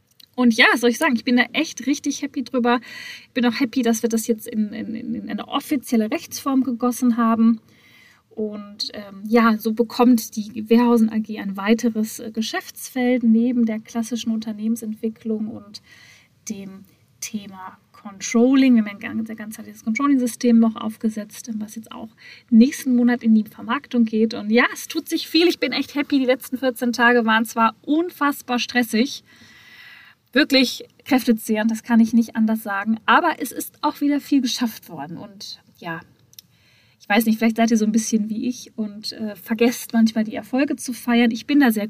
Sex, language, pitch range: female, German, 220-245 Hz